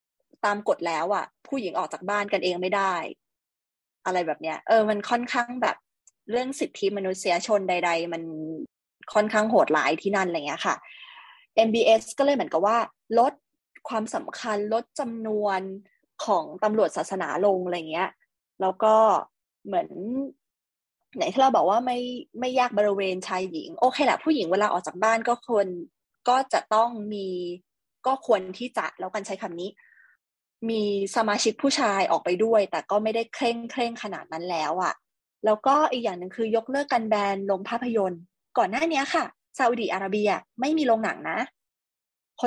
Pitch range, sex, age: 195-250 Hz, female, 20-39